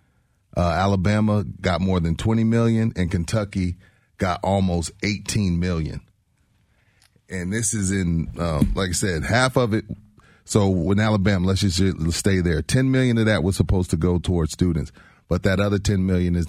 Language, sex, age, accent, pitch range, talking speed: English, male, 30-49, American, 85-105 Hz, 170 wpm